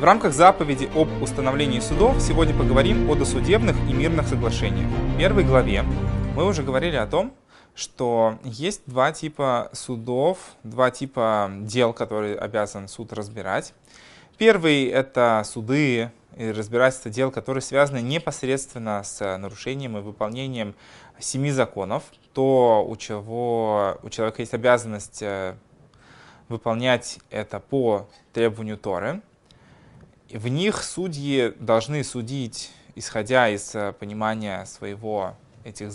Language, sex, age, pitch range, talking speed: Russian, male, 20-39, 105-135 Hz, 115 wpm